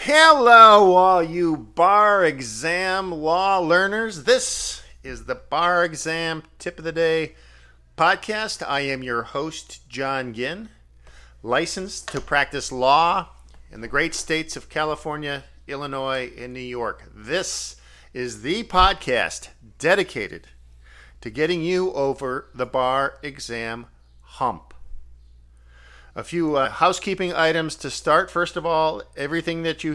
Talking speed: 125 wpm